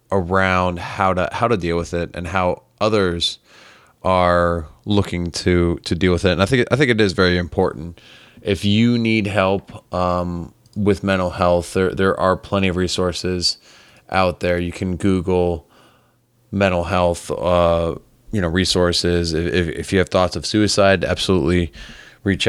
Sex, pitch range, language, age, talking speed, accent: male, 90-100 Hz, English, 20-39, 165 wpm, American